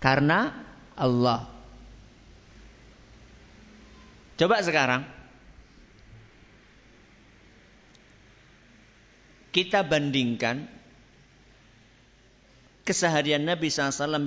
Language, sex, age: Malay, male, 50-69